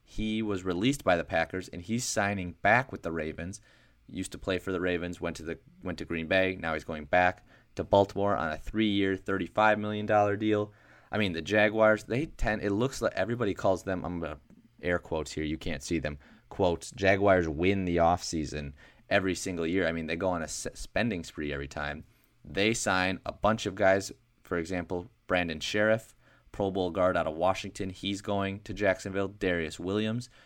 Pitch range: 85-105 Hz